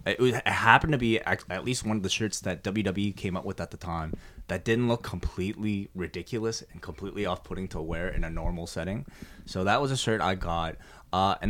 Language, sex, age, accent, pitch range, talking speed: English, male, 20-39, American, 85-110 Hz, 215 wpm